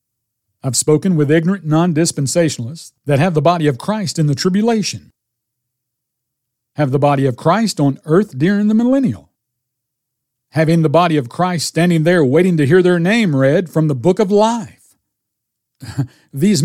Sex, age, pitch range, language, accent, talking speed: male, 50-69, 125-190 Hz, English, American, 155 wpm